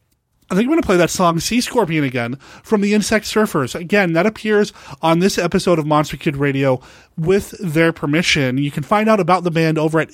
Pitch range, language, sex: 155-210 Hz, English, male